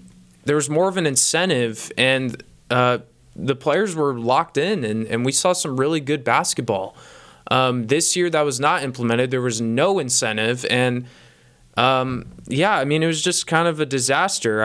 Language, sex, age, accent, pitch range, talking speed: English, male, 20-39, American, 120-150 Hz, 180 wpm